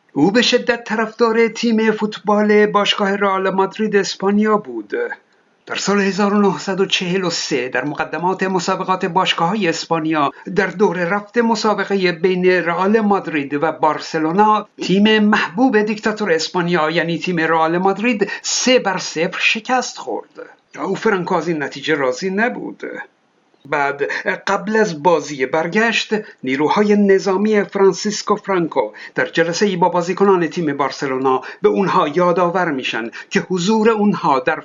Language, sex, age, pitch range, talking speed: Persian, male, 60-79, 170-210 Hz, 120 wpm